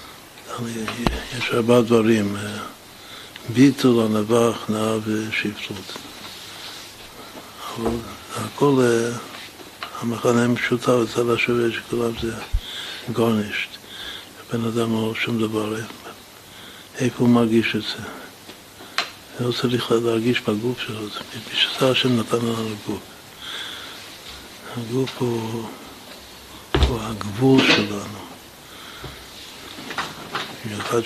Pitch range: 110-120 Hz